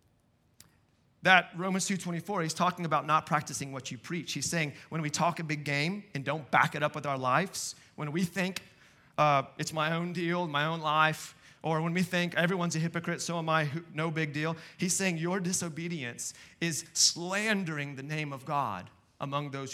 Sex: male